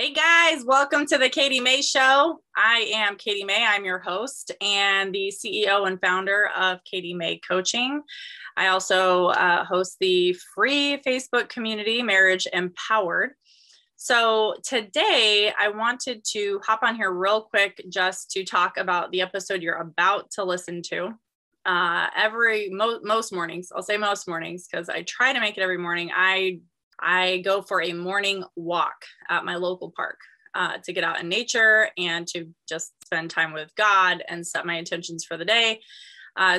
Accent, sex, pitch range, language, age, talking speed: American, female, 180-220 Hz, English, 20-39, 170 wpm